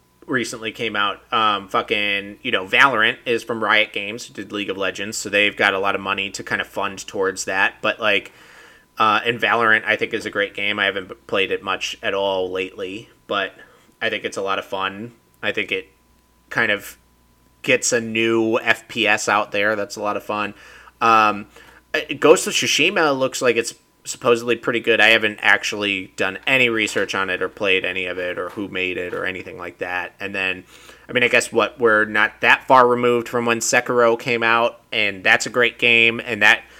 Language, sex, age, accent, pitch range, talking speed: English, male, 30-49, American, 100-120 Hz, 205 wpm